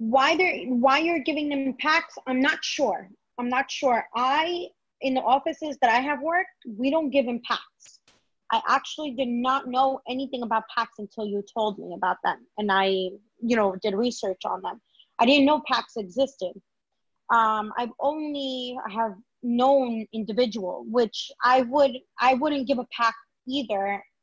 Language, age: English, 20-39